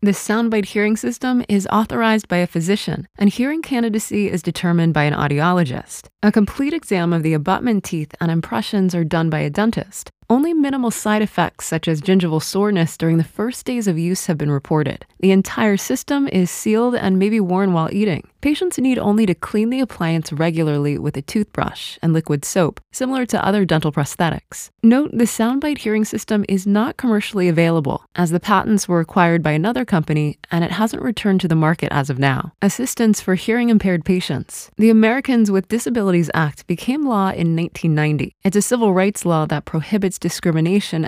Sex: female